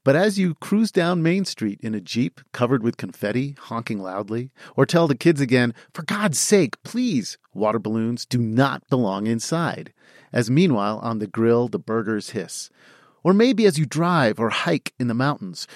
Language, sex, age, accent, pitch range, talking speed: English, male, 40-59, American, 120-170 Hz, 185 wpm